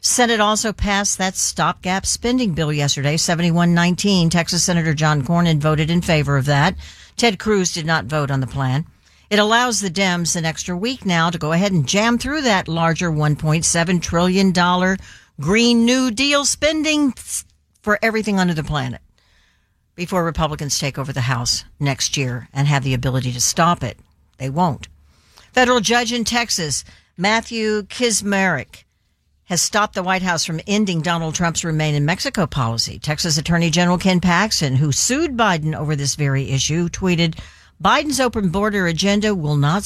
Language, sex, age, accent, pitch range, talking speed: English, female, 60-79, American, 145-200 Hz, 165 wpm